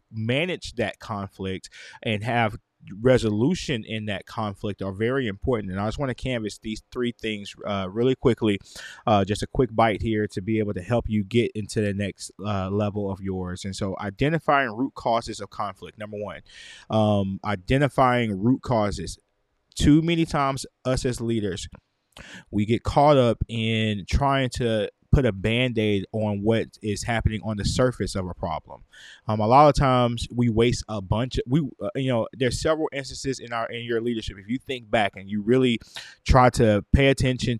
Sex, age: male, 20-39